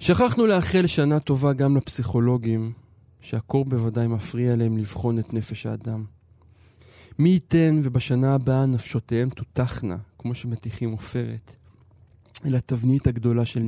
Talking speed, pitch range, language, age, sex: 120 wpm, 115-130 Hz, Hebrew, 20-39, male